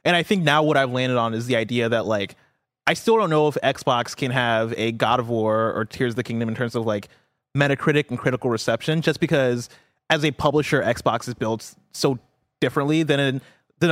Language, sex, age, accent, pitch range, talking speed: English, male, 20-39, American, 120-150 Hz, 220 wpm